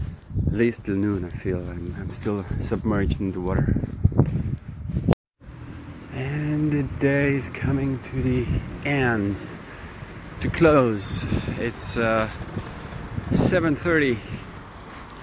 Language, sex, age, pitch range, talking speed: English, male, 30-49, 105-140 Hz, 100 wpm